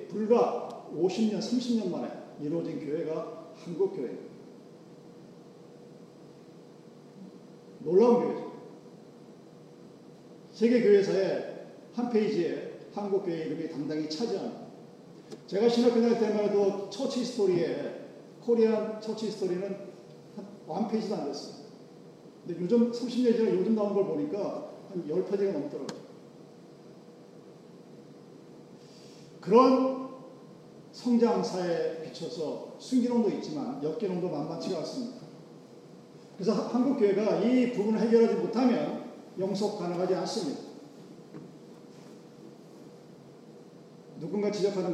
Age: 40-59